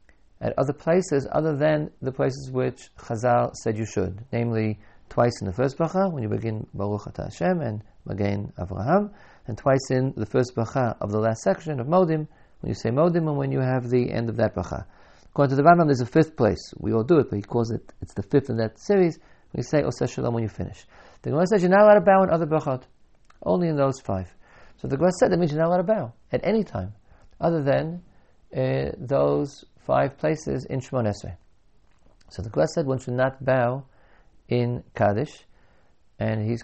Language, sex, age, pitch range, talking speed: English, male, 50-69, 105-155 Hz, 215 wpm